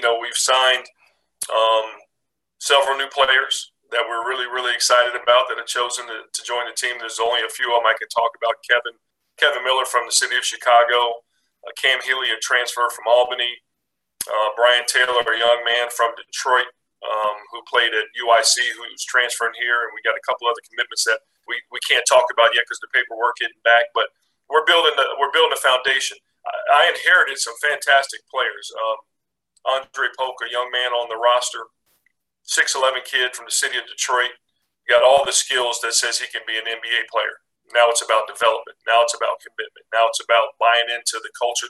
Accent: American